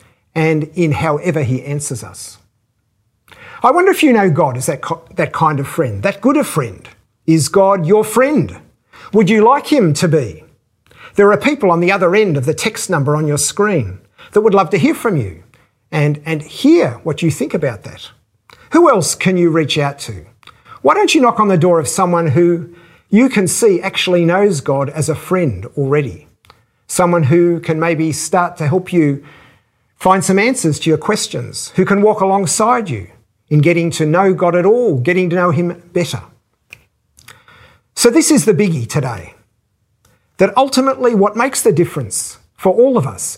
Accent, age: Australian, 50-69